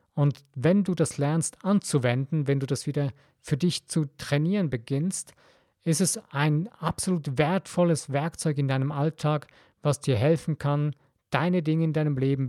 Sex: male